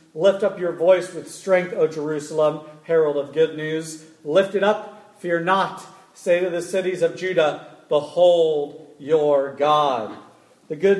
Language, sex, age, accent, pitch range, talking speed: English, male, 40-59, American, 160-210 Hz, 155 wpm